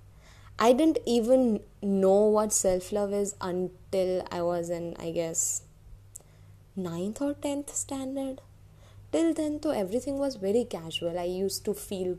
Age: 20-39